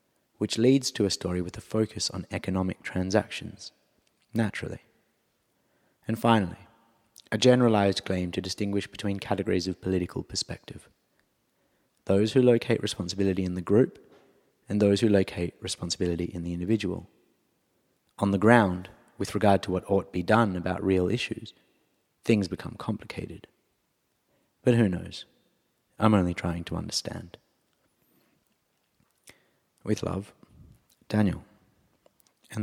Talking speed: 125 wpm